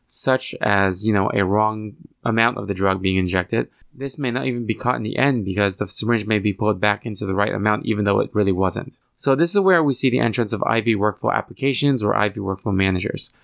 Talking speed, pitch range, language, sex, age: 235 wpm, 105-130 Hz, English, male, 20-39